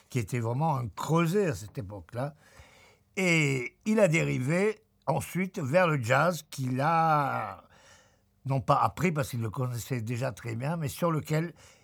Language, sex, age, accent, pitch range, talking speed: French, male, 50-69, French, 130-170 Hz, 155 wpm